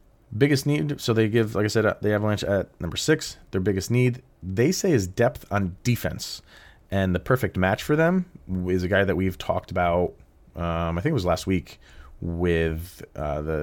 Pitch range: 90-120 Hz